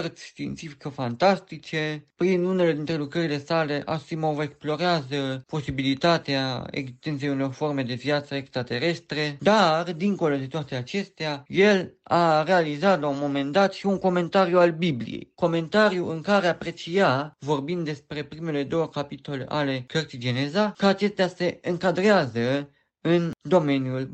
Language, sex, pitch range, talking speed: Romanian, male, 140-170 Hz, 130 wpm